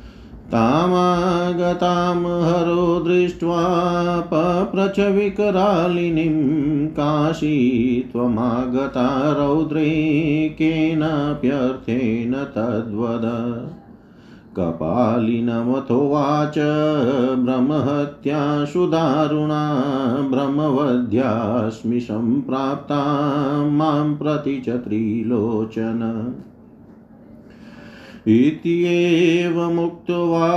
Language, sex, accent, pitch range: Hindi, male, native, 125-160 Hz